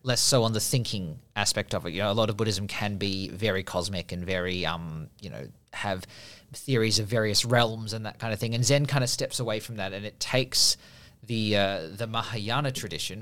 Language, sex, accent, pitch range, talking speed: English, male, Australian, 100-125 Hz, 225 wpm